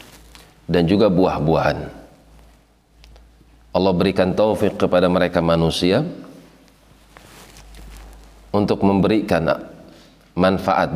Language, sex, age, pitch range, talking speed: Indonesian, male, 40-59, 80-95 Hz, 65 wpm